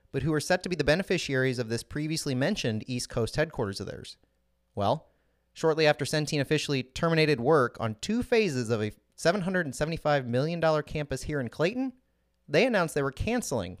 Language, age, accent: English, 30-49, American